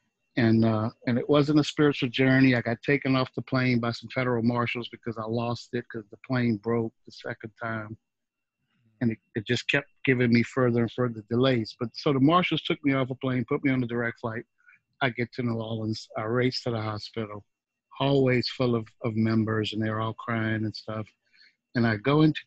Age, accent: 50-69, American